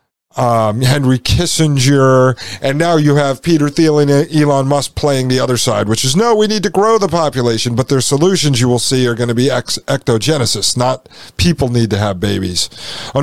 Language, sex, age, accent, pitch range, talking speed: English, male, 40-59, American, 120-150 Hz, 195 wpm